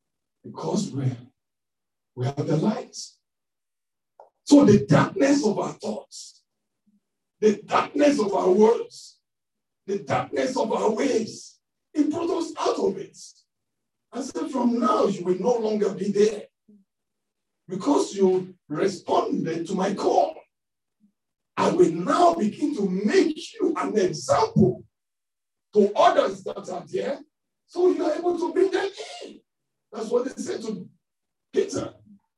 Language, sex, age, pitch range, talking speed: English, male, 50-69, 195-305 Hz, 130 wpm